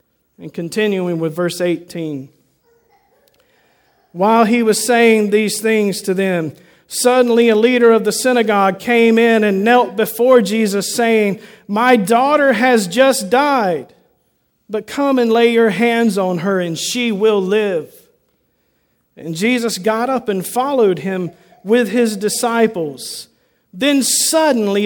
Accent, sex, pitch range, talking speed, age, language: American, male, 185-250 Hz, 135 wpm, 50-69, English